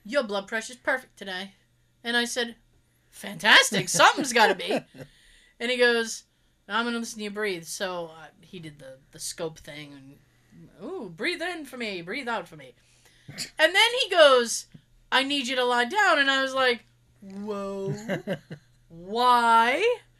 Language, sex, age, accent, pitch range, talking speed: English, female, 30-49, American, 185-285 Hz, 170 wpm